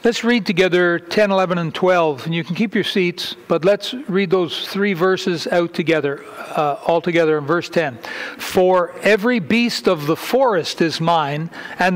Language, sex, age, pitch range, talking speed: English, male, 60-79, 170-205 Hz, 180 wpm